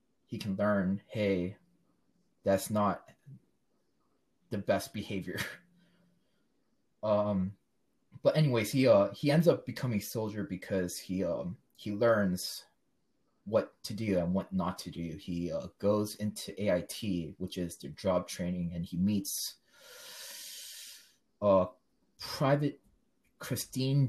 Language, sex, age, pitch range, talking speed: English, male, 20-39, 95-120 Hz, 120 wpm